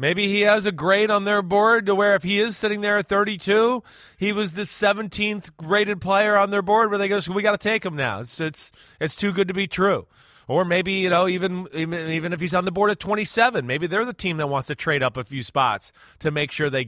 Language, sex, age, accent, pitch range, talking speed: English, male, 30-49, American, 135-190 Hz, 265 wpm